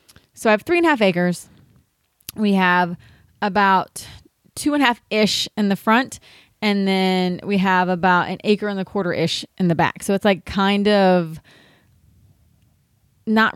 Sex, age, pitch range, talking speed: female, 20-39, 185-225 Hz, 165 wpm